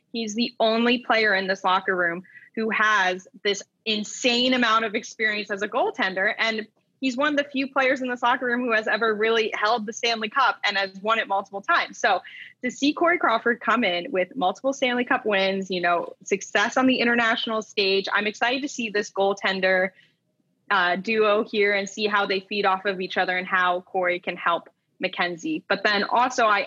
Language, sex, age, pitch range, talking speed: English, female, 10-29, 195-235 Hz, 205 wpm